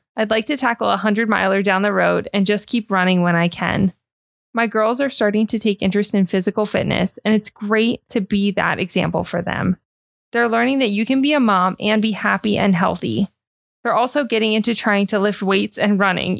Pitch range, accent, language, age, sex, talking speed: 180-210 Hz, American, English, 20-39, female, 215 wpm